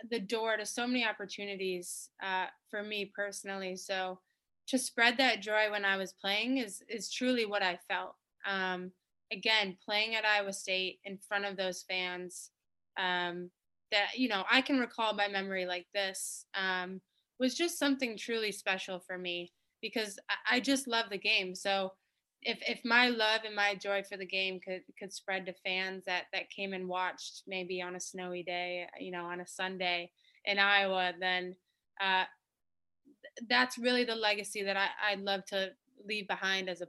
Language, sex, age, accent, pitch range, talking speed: English, female, 20-39, American, 180-215 Hz, 175 wpm